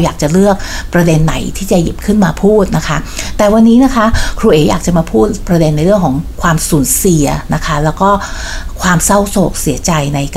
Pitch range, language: 160-200 Hz, Thai